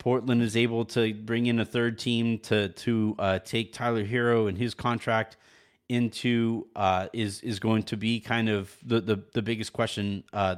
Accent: American